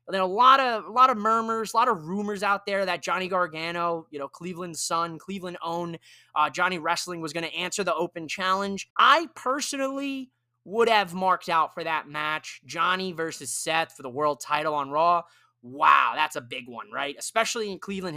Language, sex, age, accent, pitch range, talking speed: English, male, 20-39, American, 155-215 Hz, 195 wpm